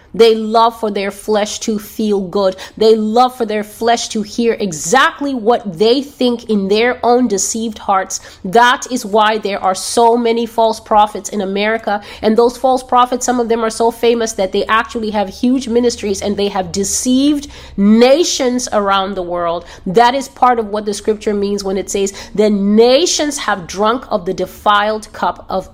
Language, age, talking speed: English, 30-49, 185 wpm